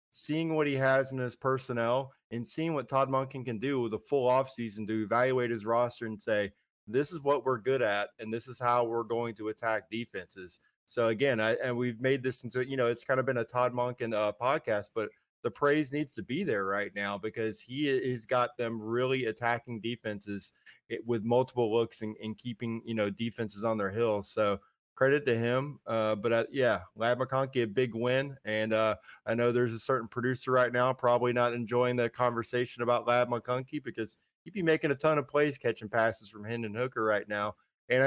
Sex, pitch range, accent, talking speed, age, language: male, 110-130 Hz, American, 215 wpm, 20-39, English